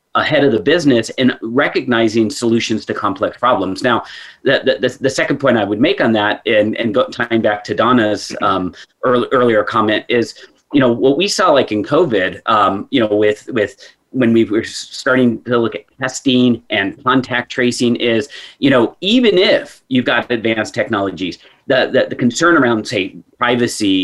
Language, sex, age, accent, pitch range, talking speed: English, male, 30-49, American, 110-135 Hz, 185 wpm